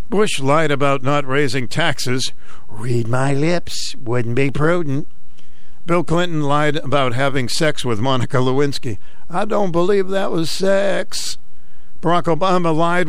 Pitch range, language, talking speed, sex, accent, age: 130-160 Hz, English, 140 wpm, male, American, 60-79